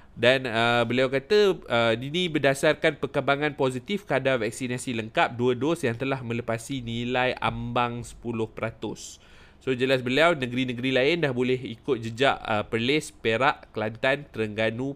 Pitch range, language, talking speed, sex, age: 110-140 Hz, Malay, 135 wpm, male, 20-39